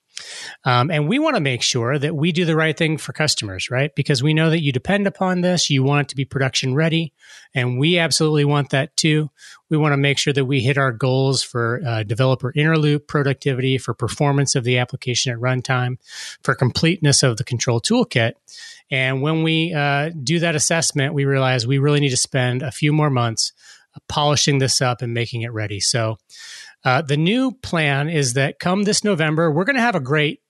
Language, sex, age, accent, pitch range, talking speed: English, male, 30-49, American, 130-160 Hz, 210 wpm